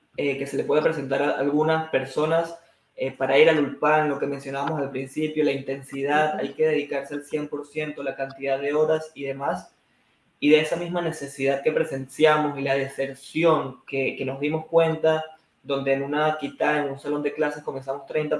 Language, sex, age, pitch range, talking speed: Hebrew, male, 20-39, 140-160 Hz, 190 wpm